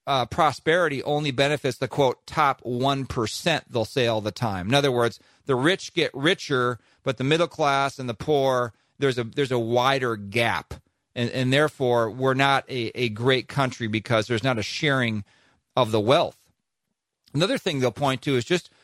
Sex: male